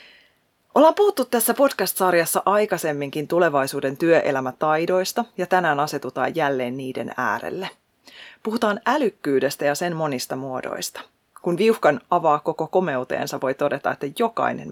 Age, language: 30-49, Finnish